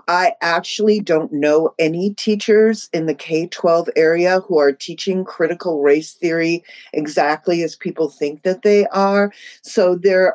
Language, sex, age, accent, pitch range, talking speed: English, female, 50-69, American, 165-205 Hz, 145 wpm